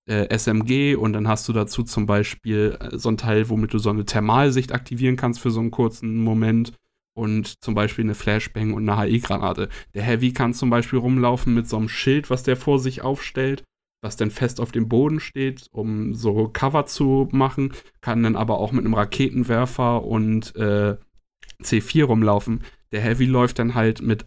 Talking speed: 185 wpm